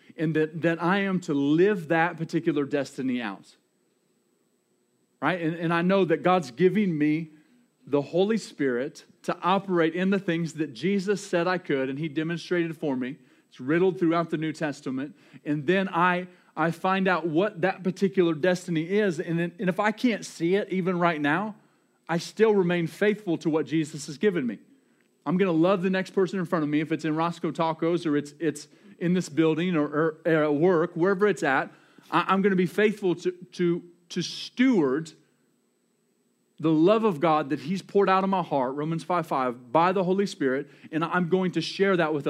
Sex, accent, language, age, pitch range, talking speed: male, American, English, 40-59, 155-185 Hz, 195 wpm